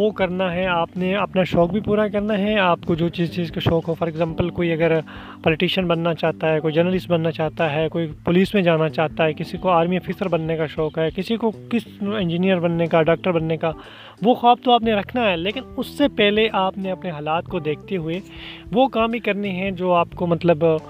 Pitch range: 165-200 Hz